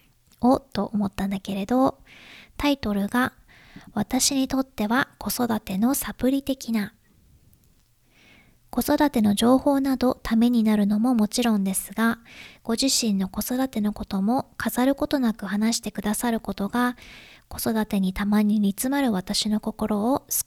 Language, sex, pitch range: Japanese, male, 195-245 Hz